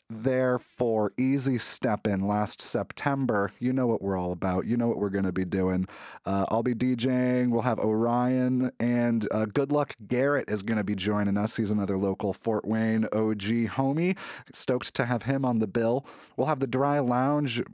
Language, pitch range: English, 105-130 Hz